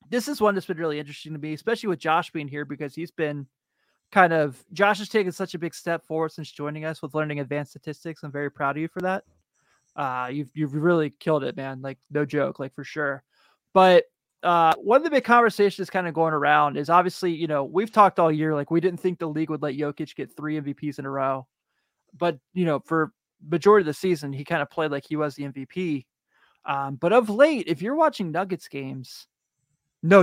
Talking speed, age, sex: 230 wpm, 20-39, male